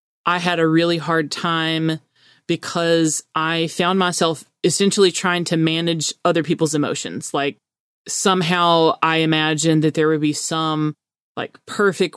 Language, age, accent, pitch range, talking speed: English, 30-49, American, 160-185 Hz, 140 wpm